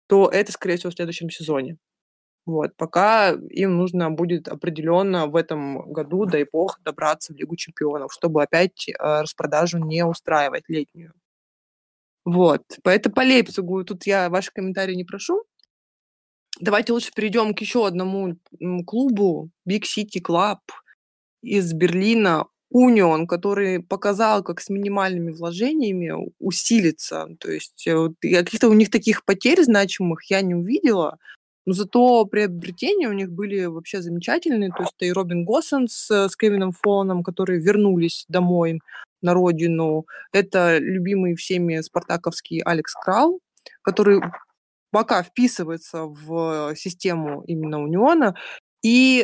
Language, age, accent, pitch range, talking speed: Russian, 20-39, native, 165-205 Hz, 125 wpm